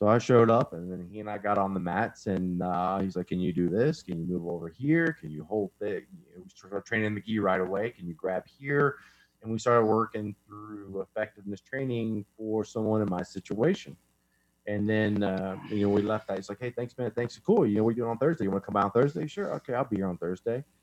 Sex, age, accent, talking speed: male, 30-49, American, 255 wpm